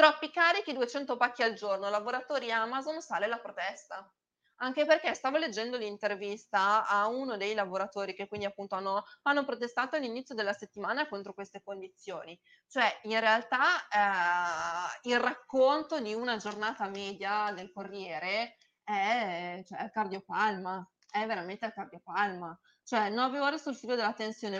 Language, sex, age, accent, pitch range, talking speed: Italian, female, 20-39, native, 205-265 Hz, 140 wpm